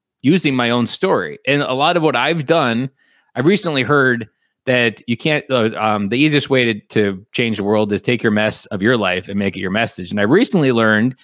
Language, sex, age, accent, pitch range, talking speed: English, male, 20-39, American, 105-135 Hz, 230 wpm